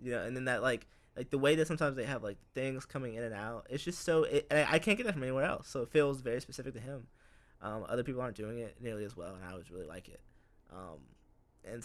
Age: 20-39